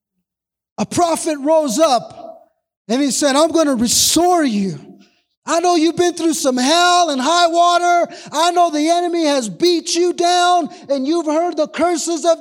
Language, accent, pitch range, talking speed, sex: English, American, 255-330 Hz, 175 wpm, male